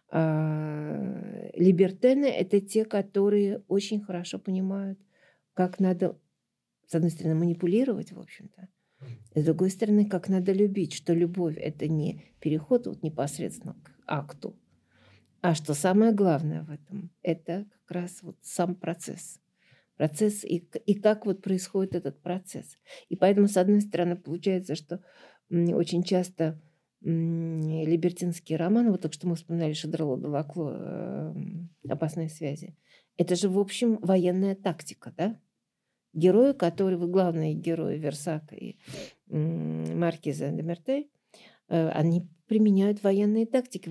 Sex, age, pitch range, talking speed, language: female, 50-69, 160-195 Hz, 125 wpm, Russian